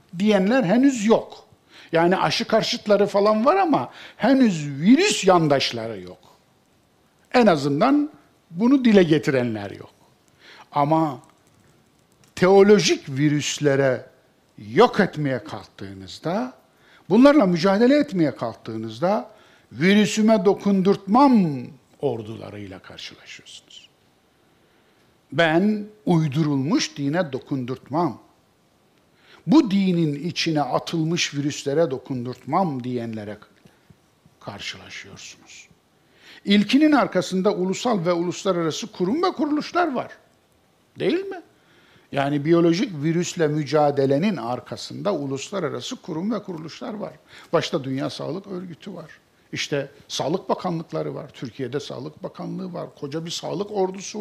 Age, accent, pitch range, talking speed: 60-79, native, 140-205 Hz, 90 wpm